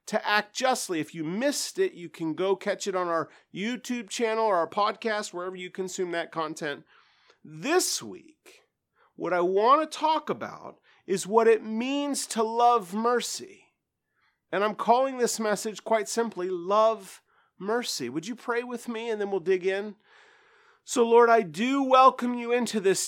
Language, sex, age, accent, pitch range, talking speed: English, male, 40-59, American, 180-240 Hz, 170 wpm